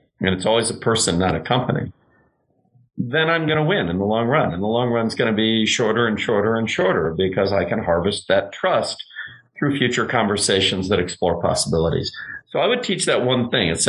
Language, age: English, 50-69